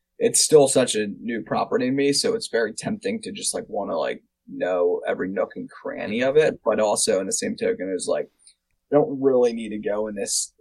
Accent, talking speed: American, 240 wpm